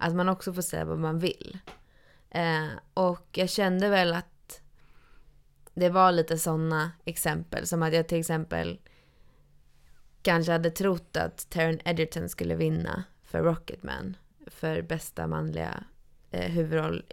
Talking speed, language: 130 wpm, Swedish